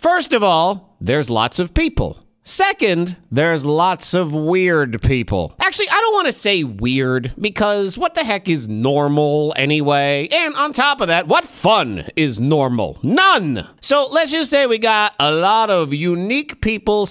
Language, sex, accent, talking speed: English, male, American, 170 wpm